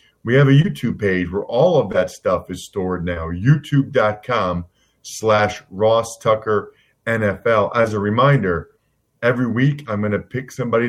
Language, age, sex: English, 40-59, male